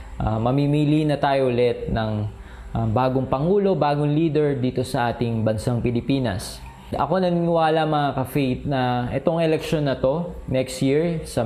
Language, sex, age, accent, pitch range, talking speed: Filipino, male, 20-39, native, 115-145 Hz, 145 wpm